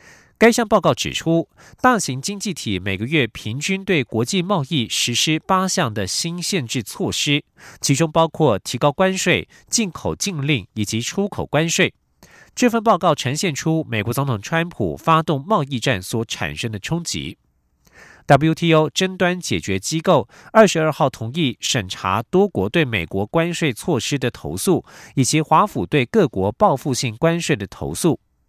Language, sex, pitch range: German, male, 110-175 Hz